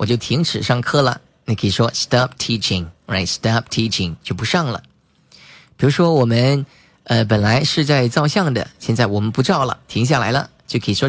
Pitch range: 110-150 Hz